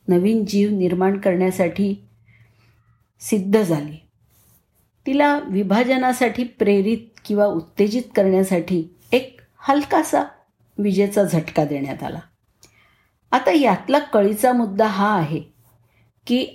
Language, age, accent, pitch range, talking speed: Marathi, 50-69, native, 165-230 Hz, 90 wpm